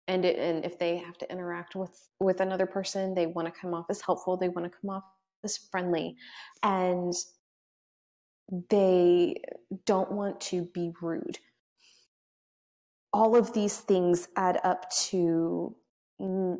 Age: 20-39